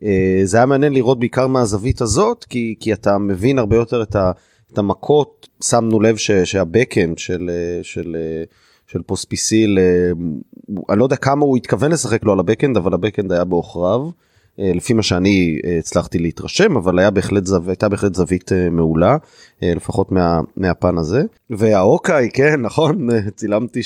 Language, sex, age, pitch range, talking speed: Hebrew, male, 30-49, 95-120 Hz, 170 wpm